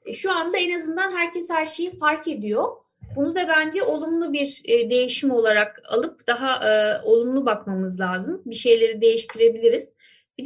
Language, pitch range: Turkish, 235-330 Hz